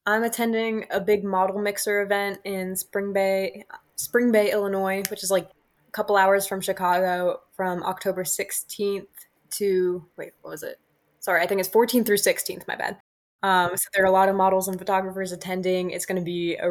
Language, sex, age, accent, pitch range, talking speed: English, female, 20-39, American, 180-200 Hz, 195 wpm